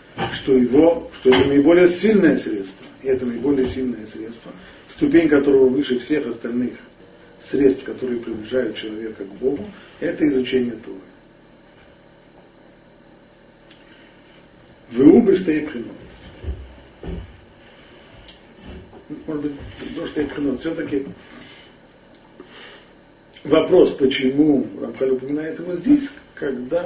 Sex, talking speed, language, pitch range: male, 90 wpm, Russian, 120-155 Hz